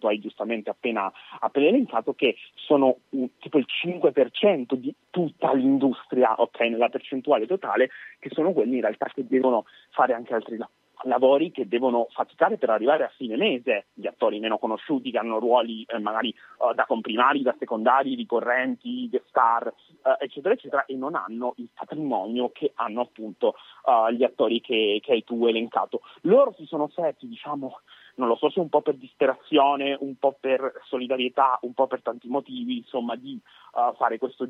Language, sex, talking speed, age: Italian, male, 175 wpm, 30-49